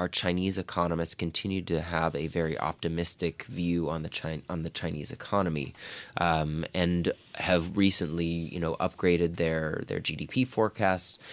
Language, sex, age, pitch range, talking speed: English, male, 20-39, 80-90 Hz, 150 wpm